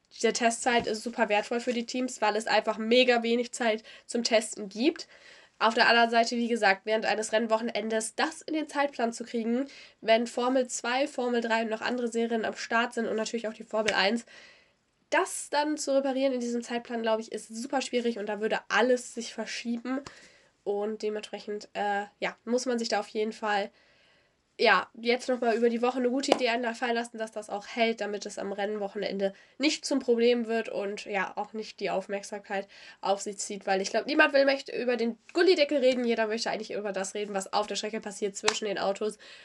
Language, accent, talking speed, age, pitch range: German, German, 210 wpm, 10-29, 210-245 Hz